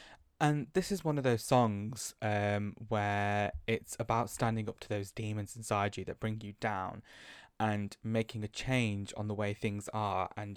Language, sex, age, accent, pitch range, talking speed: English, male, 20-39, British, 105-125 Hz, 180 wpm